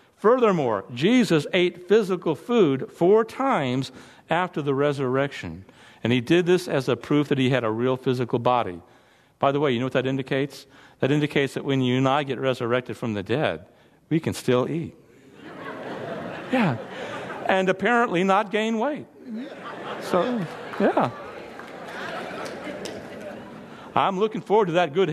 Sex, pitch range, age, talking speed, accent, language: male, 130-185 Hz, 50-69, 150 wpm, American, English